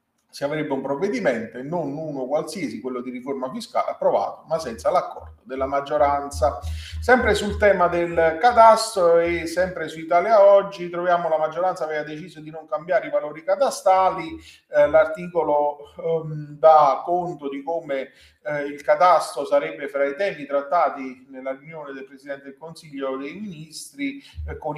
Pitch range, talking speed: 140-175 Hz, 155 wpm